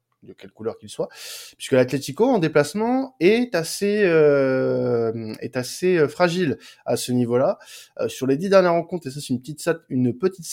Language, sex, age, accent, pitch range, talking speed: French, male, 20-39, French, 120-170 Hz, 180 wpm